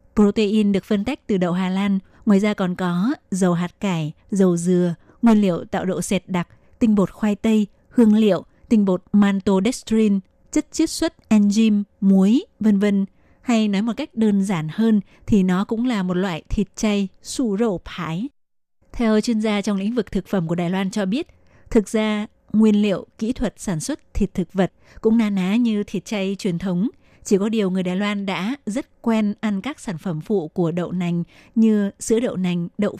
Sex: female